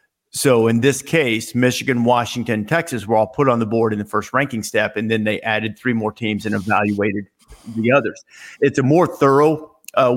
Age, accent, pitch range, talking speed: 50-69, American, 110-135 Hz, 200 wpm